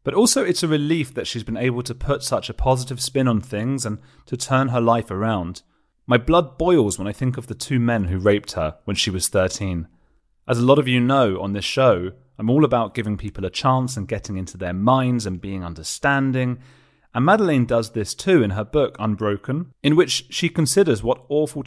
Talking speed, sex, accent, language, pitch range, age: 220 wpm, male, British, English, 95-130 Hz, 30-49